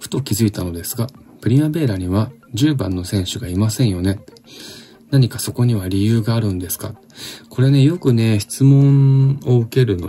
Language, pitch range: Japanese, 90-120 Hz